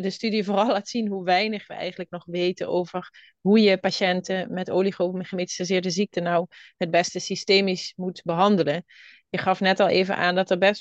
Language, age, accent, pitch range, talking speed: Dutch, 30-49, Dutch, 175-195 Hz, 190 wpm